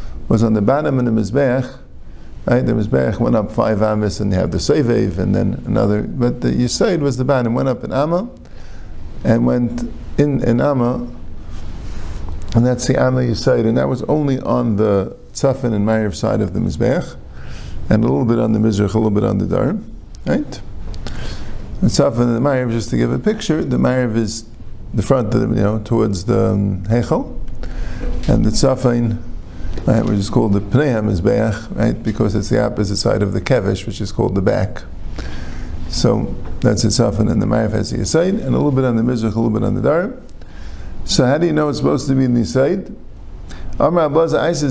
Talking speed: 200 wpm